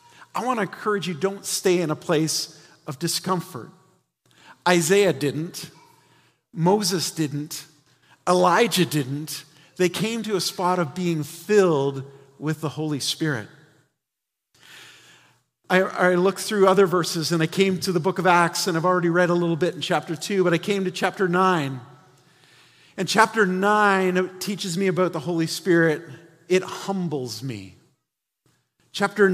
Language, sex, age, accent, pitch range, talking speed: English, male, 40-59, American, 155-190 Hz, 150 wpm